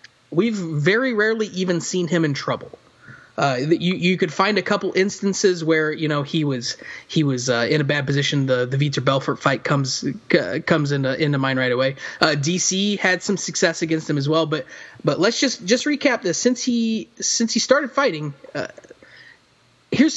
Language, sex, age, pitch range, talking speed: English, male, 20-39, 155-235 Hz, 195 wpm